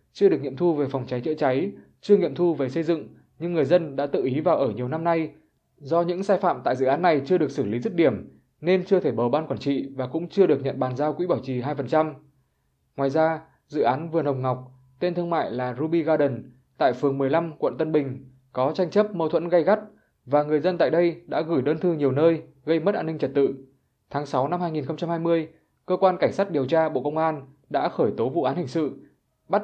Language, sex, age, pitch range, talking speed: Vietnamese, male, 20-39, 135-170 Hz, 245 wpm